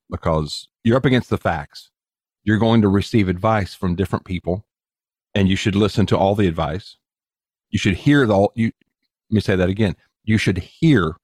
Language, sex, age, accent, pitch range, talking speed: English, male, 40-59, American, 90-110 Hz, 190 wpm